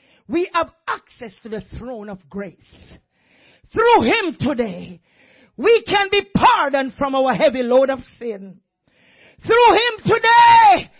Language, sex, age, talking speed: English, male, 40-59, 130 wpm